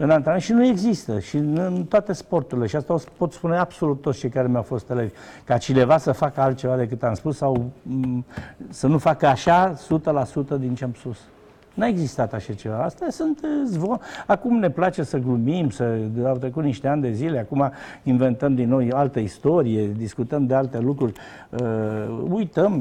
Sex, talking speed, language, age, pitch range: male, 180 wpm, Romanian, 60-79, 125-170 Hz